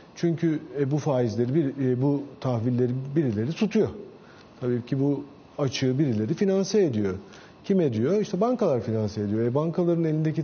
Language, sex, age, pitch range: Turkish, male, 40-59, 135-175 Hz